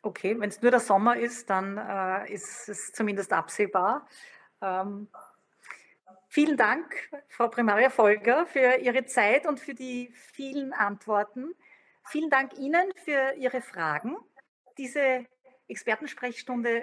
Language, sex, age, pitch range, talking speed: German, female, 40-59, 200-260 Hz, 125 wpm